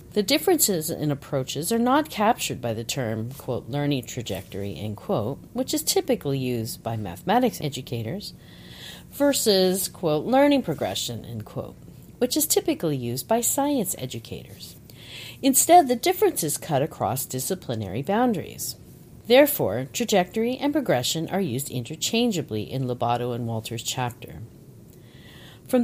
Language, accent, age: English, American, 50-69